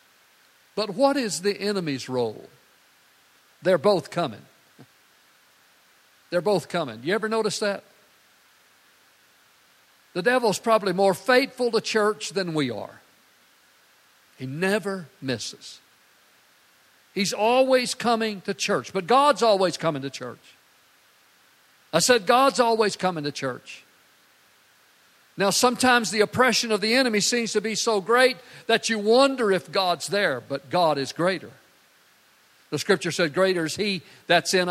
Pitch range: 150-210 Hz